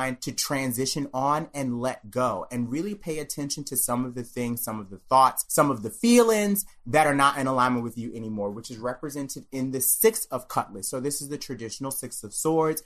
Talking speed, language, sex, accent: 220 wpm, English, male, American